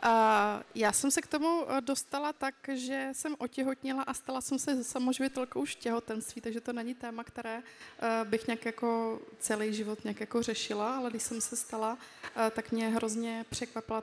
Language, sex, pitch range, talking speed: Czech, female, 210-230 Hz, 165 wpm